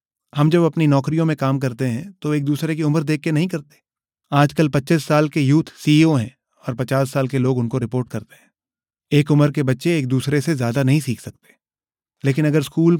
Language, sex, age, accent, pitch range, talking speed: Hindi, male, 30-49, native, 120-145 Hz, 215 wpm